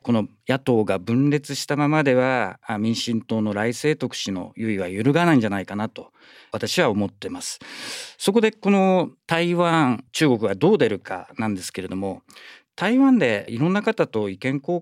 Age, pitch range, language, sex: 40-59, 105-175 Hz, Japanese, male